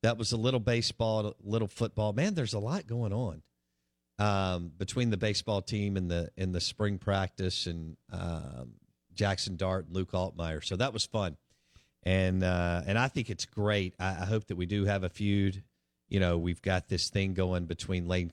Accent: American